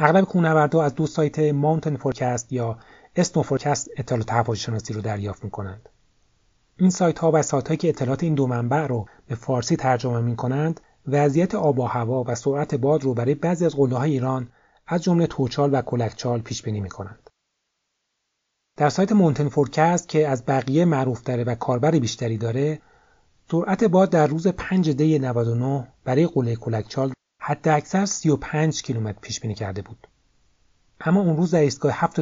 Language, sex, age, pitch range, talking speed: Persian, male, 30-49, 120-160 Hz, 155 wpm